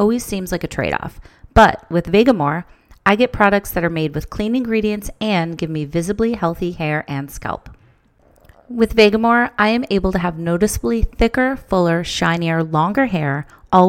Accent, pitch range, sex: American, 160-200 Hz, female